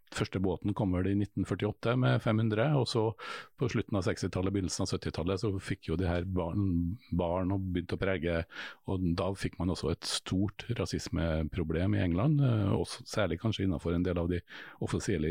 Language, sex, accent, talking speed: English, male, Norwegian, 175 wpm